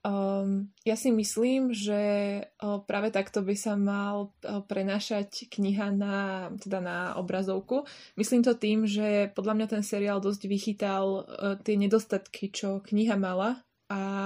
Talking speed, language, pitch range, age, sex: 140 wpm, Slovak, 195-215 Hz, 20-39, female